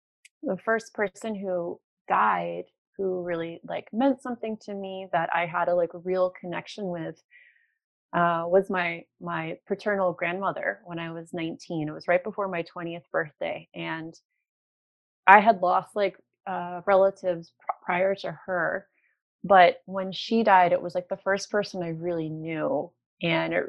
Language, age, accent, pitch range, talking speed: English, 30-49, American, 170-195 Hz, 160 wpm